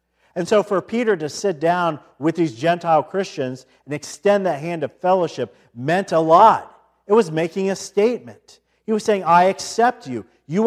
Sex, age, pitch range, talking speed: male, 40-59, 130-180 Hz, 180 wpm